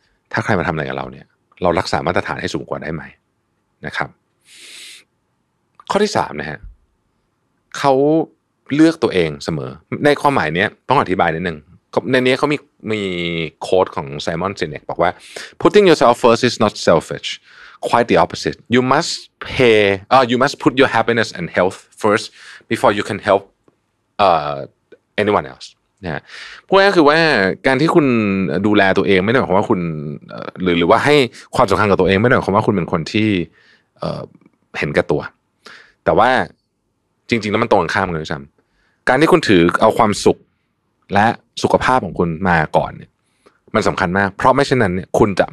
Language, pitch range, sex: Thai, 90-130 Hz, male